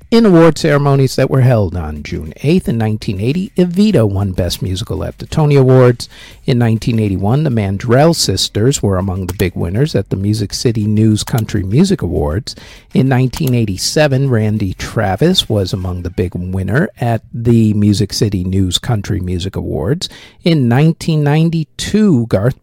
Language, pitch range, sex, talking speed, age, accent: English, 100-145 Hz, male, 170 wpm, 50-69, American